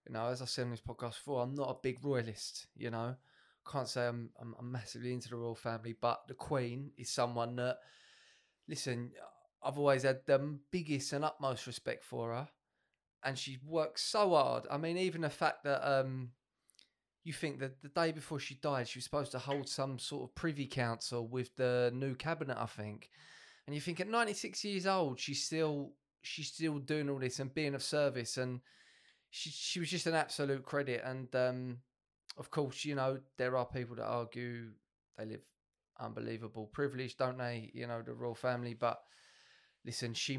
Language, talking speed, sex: English, 190 wpm, male